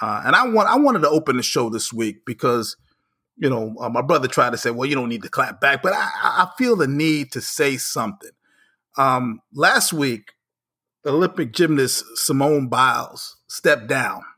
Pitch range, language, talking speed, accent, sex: 125-165 Hz, English, 190 wpm, American, male